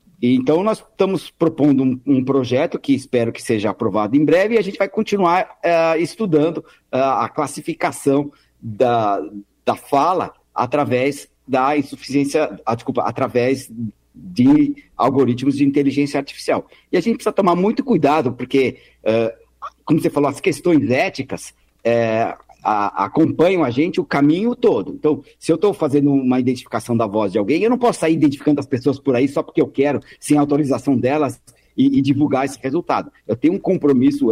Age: 50-69